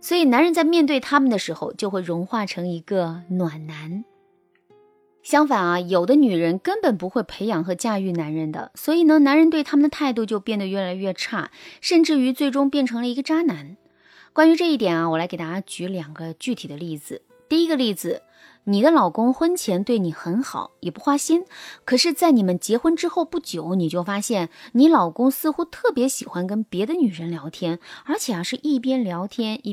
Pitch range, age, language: 175-275 Hz, 20-39, Chinese